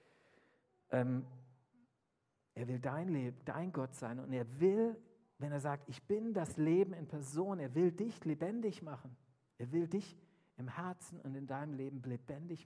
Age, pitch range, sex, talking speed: 50-69, 115-145 Hz, male, 165 wpm